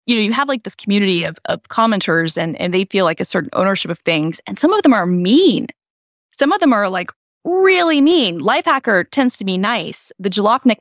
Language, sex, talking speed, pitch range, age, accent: English, female, 220 wpm, 180-240 Hz, 10-29, American